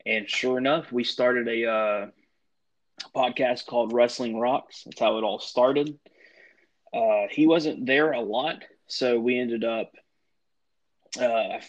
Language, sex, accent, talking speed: English, male, American, 140 wpm